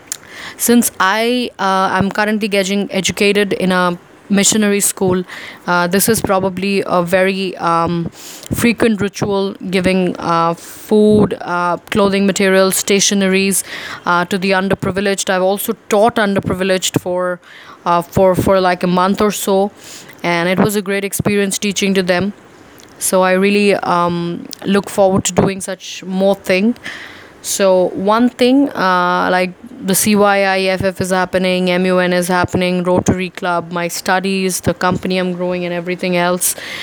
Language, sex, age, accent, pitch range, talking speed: English, female, 20-39, Indian, 180-205 Hz, 140 wpm